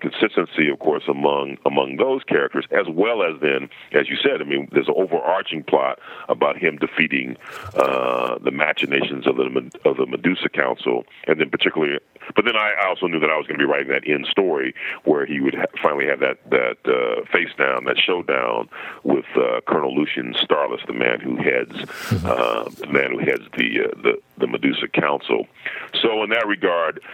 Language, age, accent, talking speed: English, 40-59, American, 190 wpm